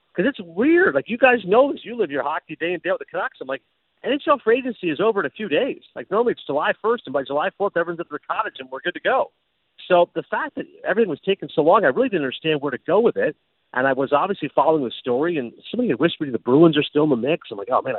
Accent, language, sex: American, English, male